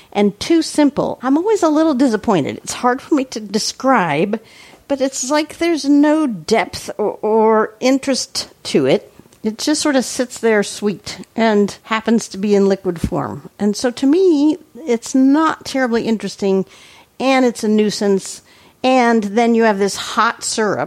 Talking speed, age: 165 wpm, 50-69